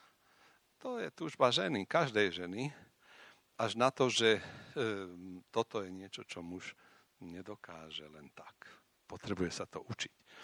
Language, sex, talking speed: Slovak, male, 125 wpm